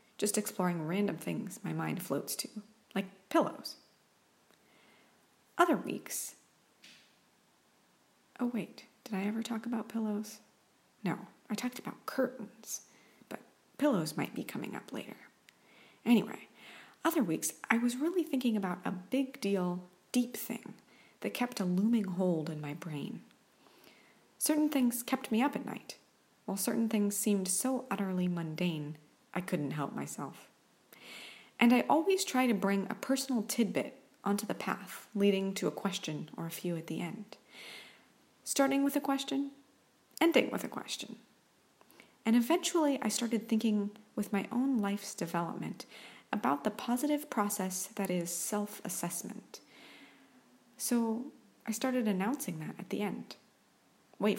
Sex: female